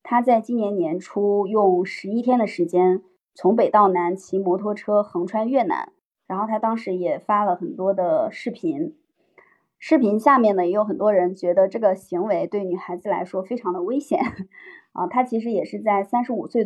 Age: 20-39